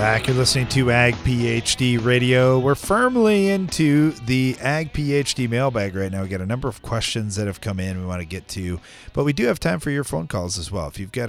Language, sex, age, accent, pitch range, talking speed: English, male, 40-59, American, 85-125 Hz, 235 wpm